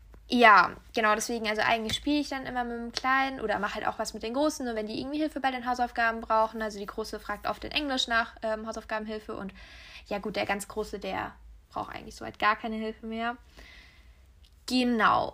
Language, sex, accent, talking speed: German, female, German, 220 wpm